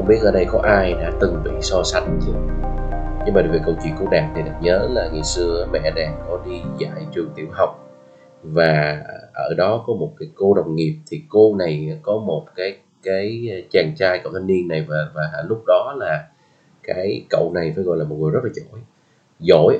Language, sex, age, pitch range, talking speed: Vietnamese, male, 20-39, 80-110 Hz, 215 wpm